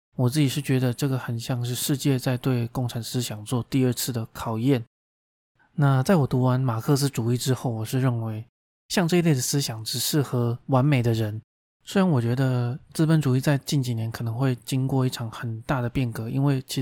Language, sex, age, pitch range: Chinese, male, 20-39, 120-140 Hz